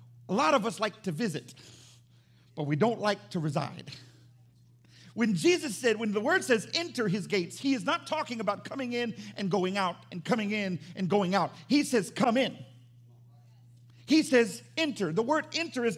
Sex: male